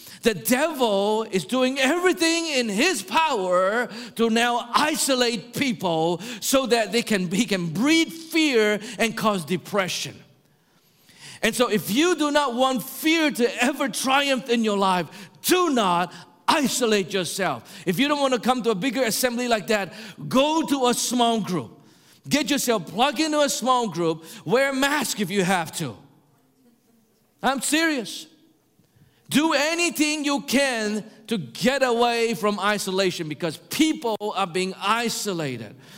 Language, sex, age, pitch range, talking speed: English, male, 50-69, 200-270 Hz, 145 wpm